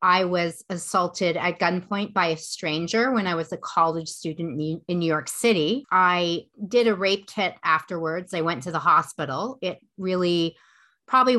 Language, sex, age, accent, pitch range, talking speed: English, female, 30-49, American, 165-195 Hz, 170 wpm